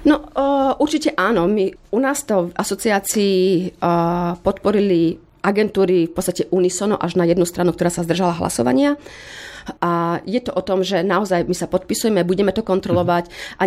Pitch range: 175-195 Hz